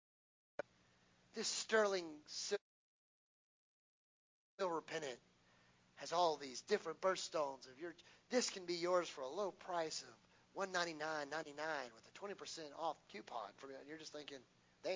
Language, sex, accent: English, male, American